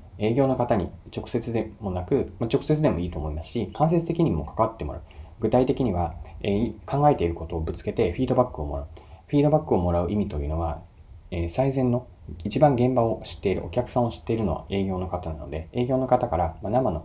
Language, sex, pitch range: Japanese, male, 85-120 Hz